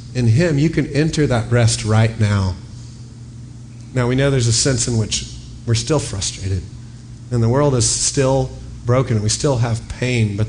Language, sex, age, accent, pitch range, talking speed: English, male, 40-59, American, 115-140 Hz, 185 wpm